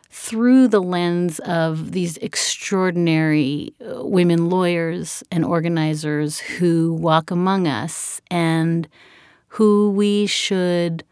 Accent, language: American, English